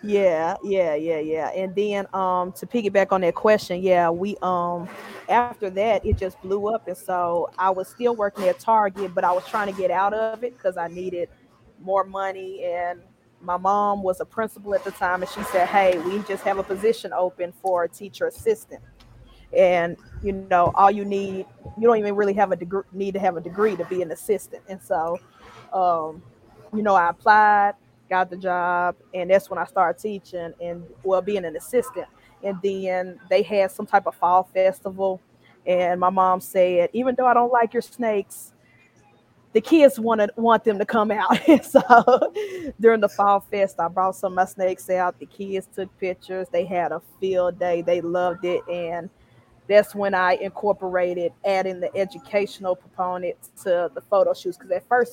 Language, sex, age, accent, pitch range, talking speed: English, female, 20-39, American, 180-205 Hz, 195 wpm